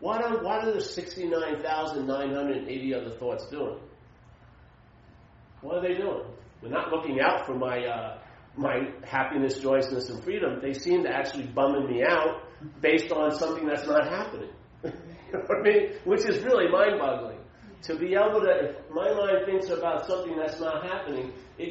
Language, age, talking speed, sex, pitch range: English, 40-59, 170 wpm, male, 135-200 Hz